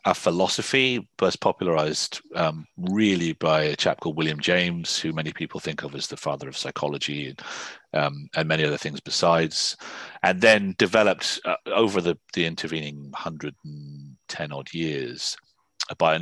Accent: British